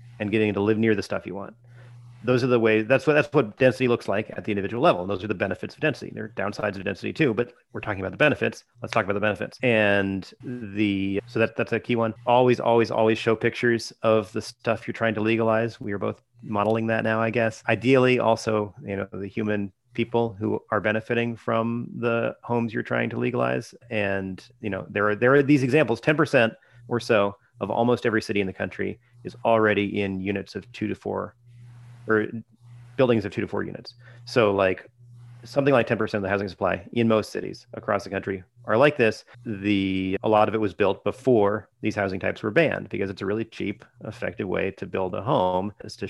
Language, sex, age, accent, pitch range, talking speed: English, male, 30-49, American, 100-120 Hz, 225 wpm